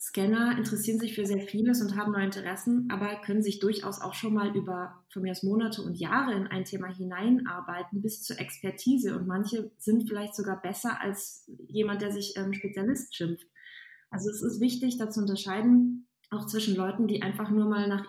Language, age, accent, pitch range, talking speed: German, 20-39, German, 200-240 Hz, 190 wpm